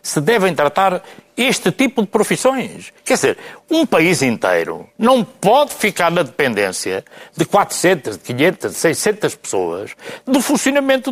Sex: male